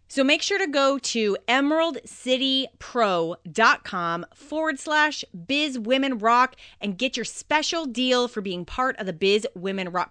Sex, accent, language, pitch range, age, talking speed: female, American, English, 180-240 Hz, 30-49, 145 wpm